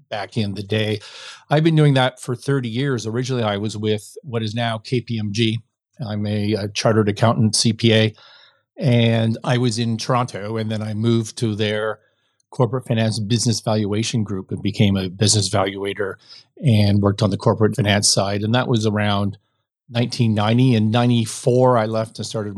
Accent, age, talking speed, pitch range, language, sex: American, 40-59, 170 wpm, 110-125 Hz, English, male